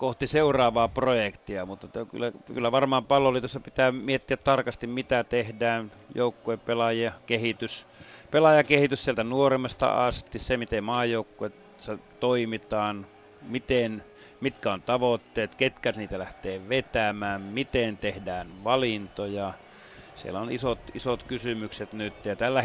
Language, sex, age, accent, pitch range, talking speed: Finnish, male, 30-49, native, 105-130 Hz, 115 wpm